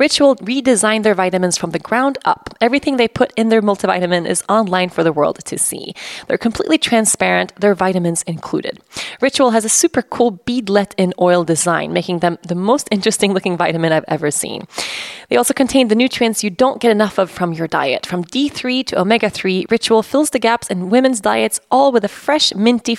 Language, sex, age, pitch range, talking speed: English, female, 20-39, 190-255 Hz, 195 wpm